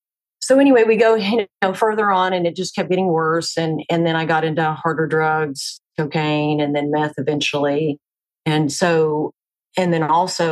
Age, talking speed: 40-59, 185 wpm